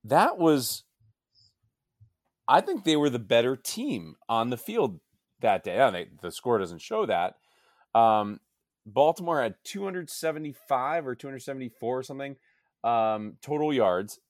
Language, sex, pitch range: English, male, 110-140 Hz